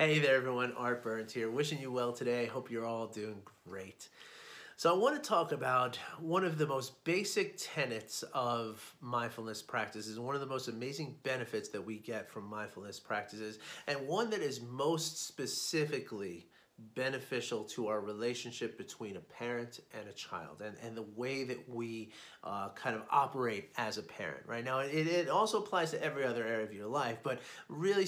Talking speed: 185 wpm